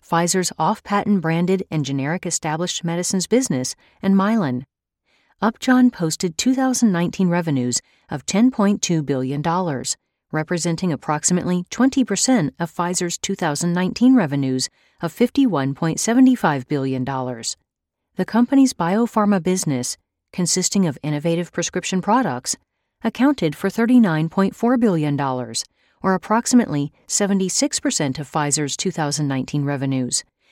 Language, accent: English, American